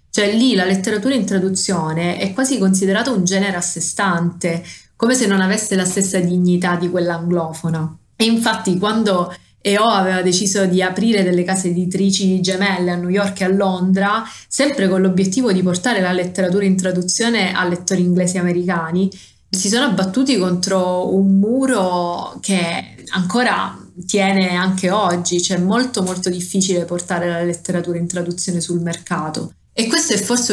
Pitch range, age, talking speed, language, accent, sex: 175-200 Hz, 30-49, 165 wpm, Italian, native, female